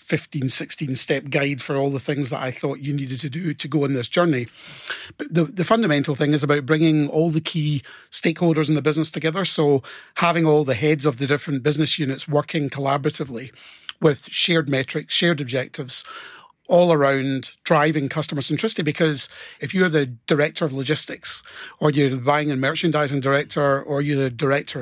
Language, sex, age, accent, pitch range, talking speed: English, male, 30-49, British, 140-160 Hz, 185 wpm